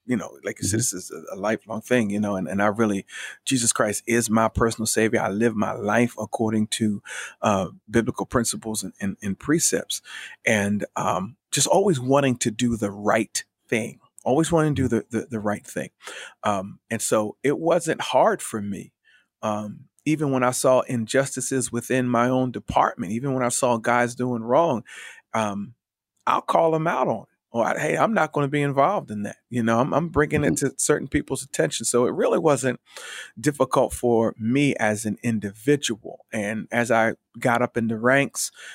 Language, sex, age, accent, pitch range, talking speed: English, male, 40-59, American, 110-130 Hz, 190 wpm